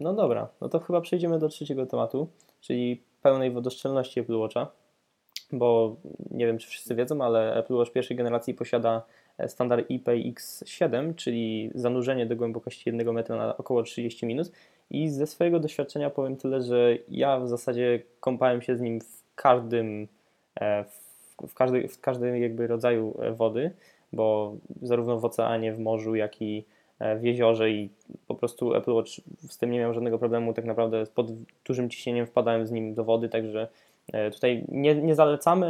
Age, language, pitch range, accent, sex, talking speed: 20-39, Polish, 115-130 Hz, native, male, 160 wpm